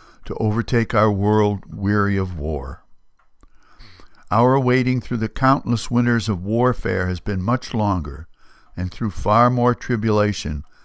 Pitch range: 100-120 Hz